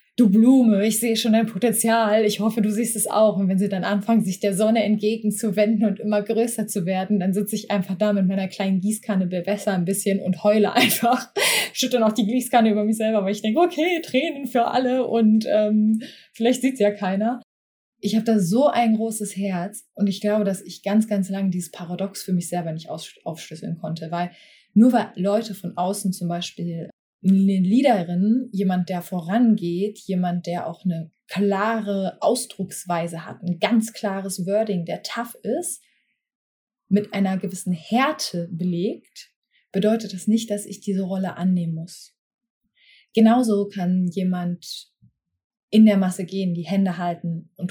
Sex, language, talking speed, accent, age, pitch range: female, German, 175 wpm, German, 20-39, 185-220 Hz